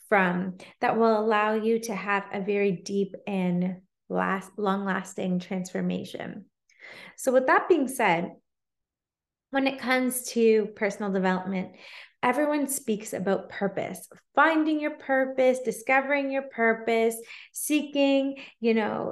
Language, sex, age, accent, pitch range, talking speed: English, female, 20-39, American, 200-255 Hz, 120 wpm